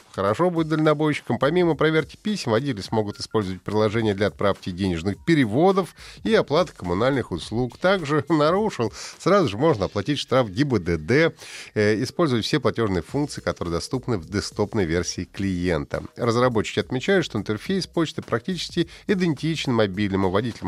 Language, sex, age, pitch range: Russian, male, 30-49, 105-155 Hz